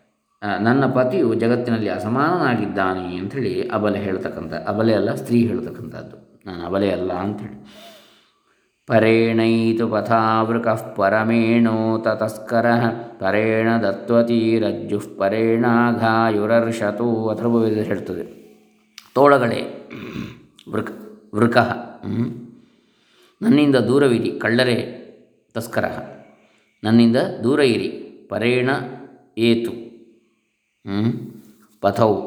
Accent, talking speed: native, 70 wpm